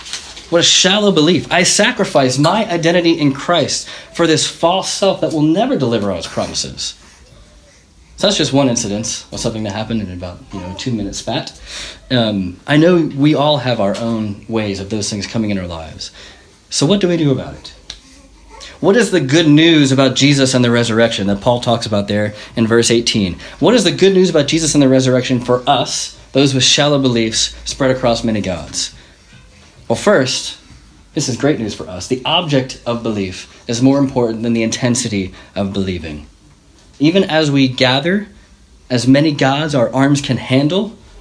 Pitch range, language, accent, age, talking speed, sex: 105-145 Hz, English, American, 30-49, 190 wpm, male